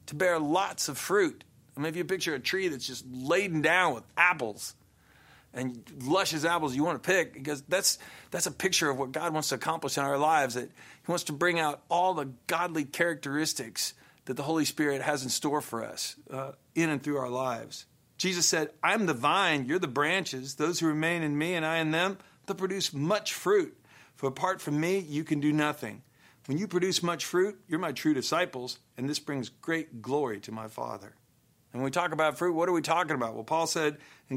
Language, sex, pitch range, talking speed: English, male, 135-170 Hz, 220 wpm